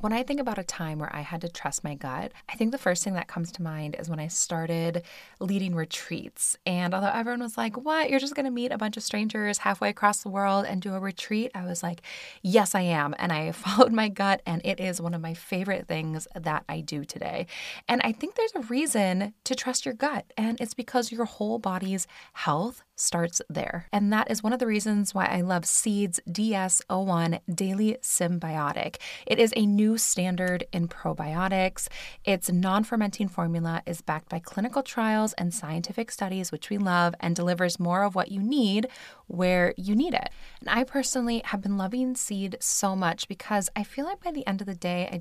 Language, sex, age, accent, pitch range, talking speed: English, female, 20-39, American, 175-235 Hz, 210 wpm